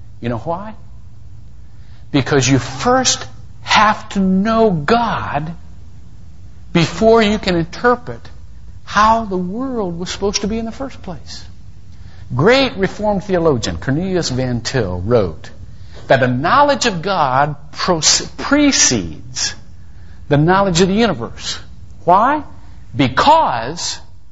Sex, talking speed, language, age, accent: male, 110 wpm, English, 60-79, American